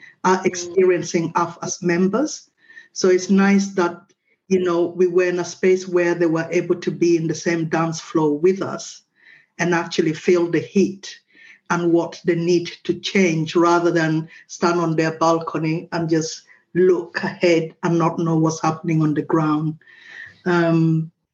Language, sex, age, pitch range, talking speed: English, female, 50-69, 165-185 Hz, 165 wpm